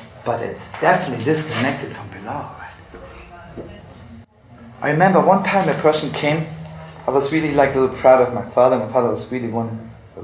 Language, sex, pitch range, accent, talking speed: English, male, 105-130 Hz, German, 170 wpm